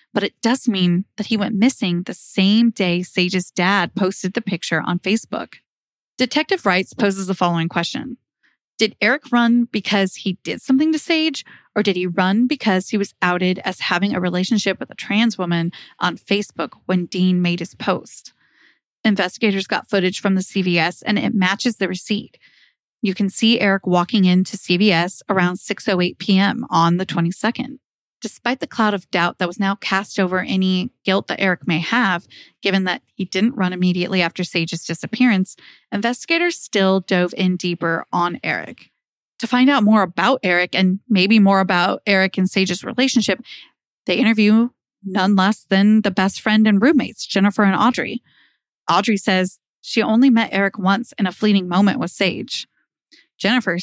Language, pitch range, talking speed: English, 185-220 Hz, 170 wpm